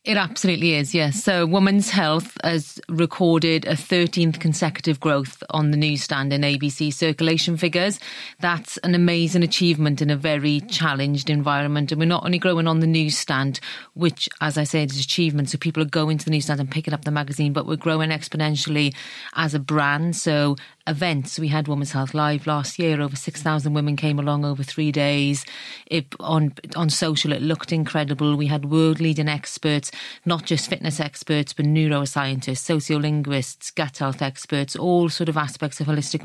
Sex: female